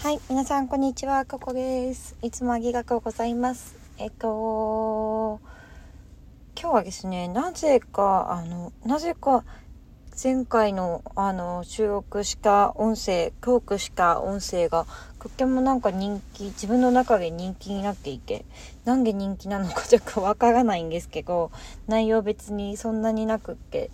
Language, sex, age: Japanese, female, 20-39